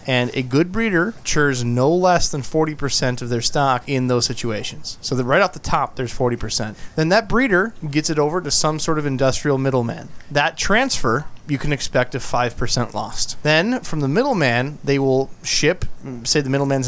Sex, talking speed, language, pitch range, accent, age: male, 190 wpm, English, 125-155 Hz, American, 30-49